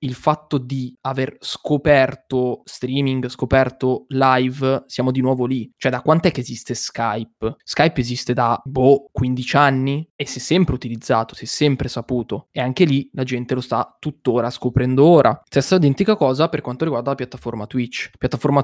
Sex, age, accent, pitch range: male, 20-39, native, 125-140 Hz